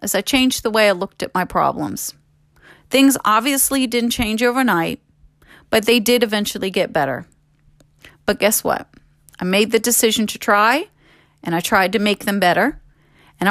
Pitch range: 170-235 Hz